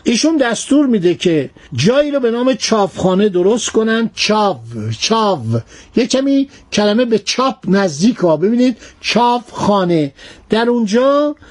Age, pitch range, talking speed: 60-79, 185-245 Hz, 125 wpm